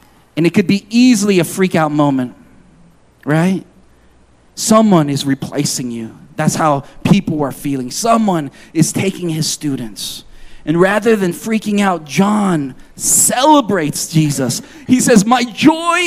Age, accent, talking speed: 40-59, American, 135 wpm